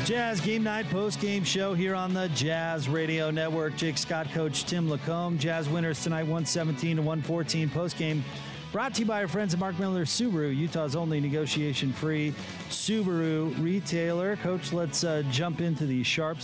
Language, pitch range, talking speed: English, 135-165 Hz, 165 wpm